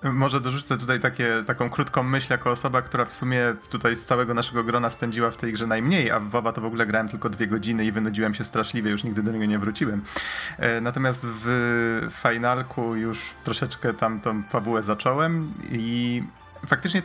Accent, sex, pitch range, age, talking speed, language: native, male, 115-140 Hz, 30-49, 185 wpm, Polish